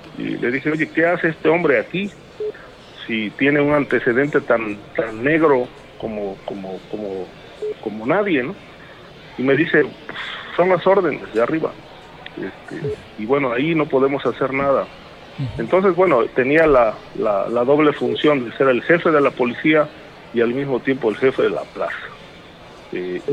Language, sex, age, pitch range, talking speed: Spanish, male, 40-59, 120-160 Hz, 165 wpm